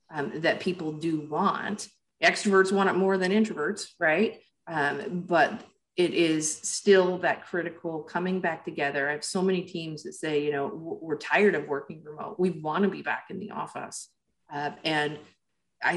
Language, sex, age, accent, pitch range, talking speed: English, female, 40-59, American, 150-185 Hz, 175 wpm